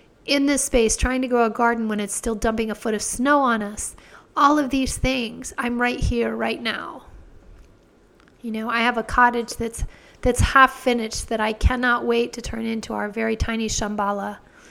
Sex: female